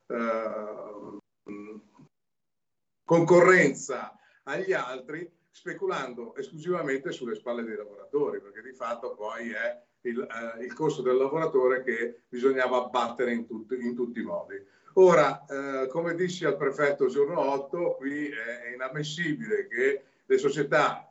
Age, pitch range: 50-69, 120-200 Hz